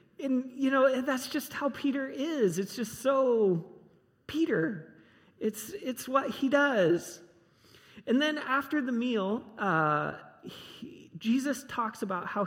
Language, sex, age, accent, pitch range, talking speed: English, male, 40-59, American, 160-245 Hz, 135 wpm